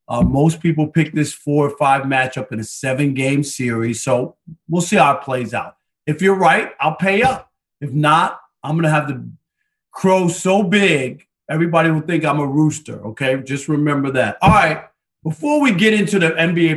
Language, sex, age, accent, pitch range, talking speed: English, male, 40-59, American, 135-170 Hz, 195 wpm